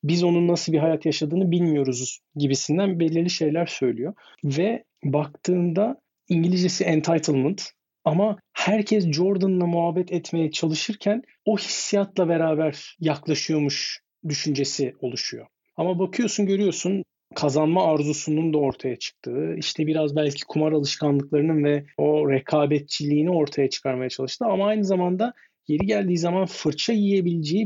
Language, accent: Turkish, native